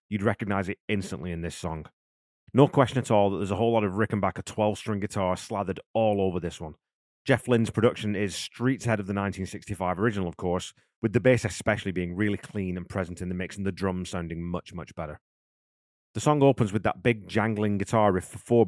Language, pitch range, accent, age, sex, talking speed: English, 95-115 Hz, British, 30-49, male, 215 wpm